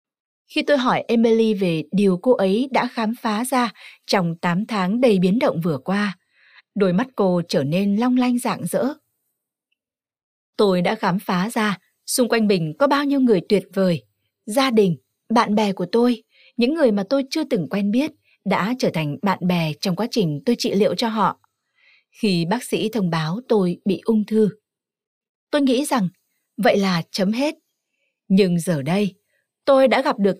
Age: 20-39